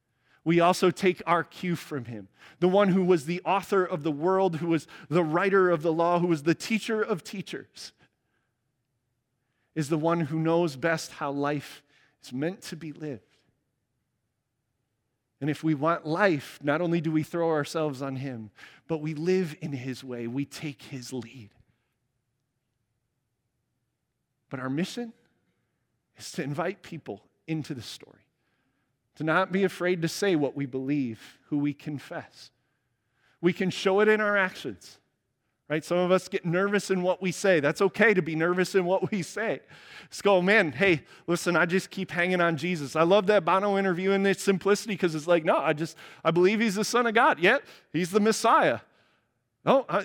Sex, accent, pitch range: male, American, 140-195 Hz